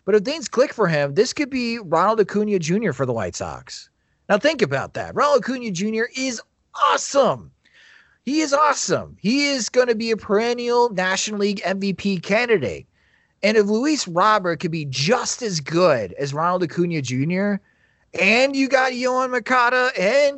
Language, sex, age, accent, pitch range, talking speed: English, male, 30-49, American, 145-215 Hz, 170 wpm